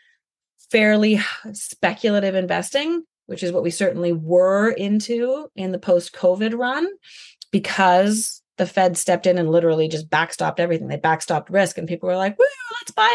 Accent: American